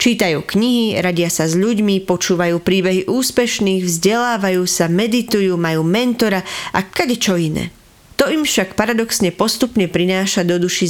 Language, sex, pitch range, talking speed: English, female, 180-225 Hz, 140 wpm